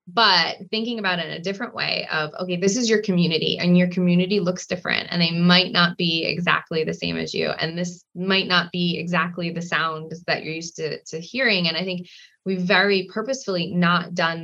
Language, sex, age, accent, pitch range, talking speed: English, female, 20-39, American, 170-215 Hz, 210 wpm